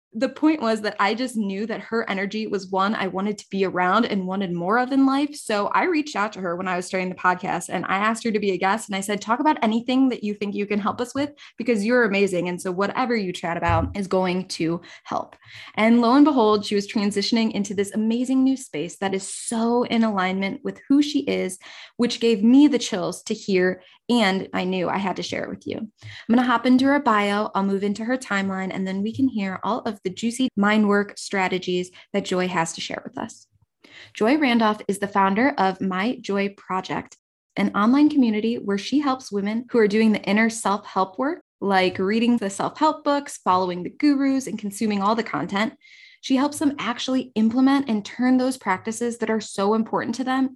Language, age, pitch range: English, 20-39, 195-245 Hz